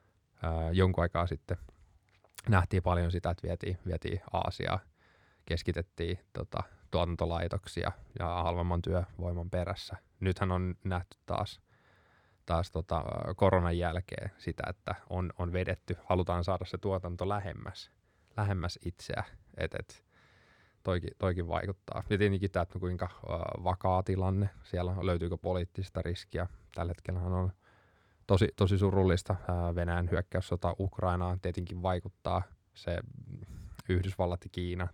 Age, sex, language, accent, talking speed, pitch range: 20-39, male, Finnish, native, 120 wpm, 85-100 Hz